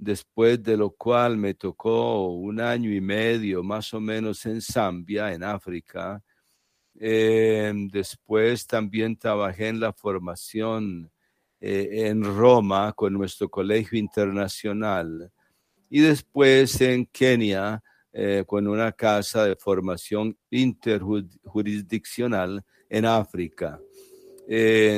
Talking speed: 110 wpm